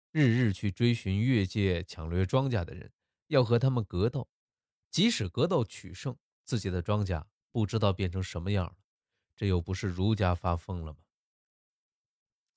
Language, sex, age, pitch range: Chinese, male, 20-39, 90-115 Hz